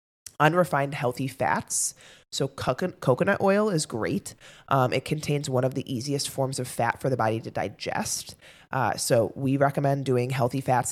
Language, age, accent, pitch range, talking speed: English, 20-39, American, 125-150 Hz, 165 wpm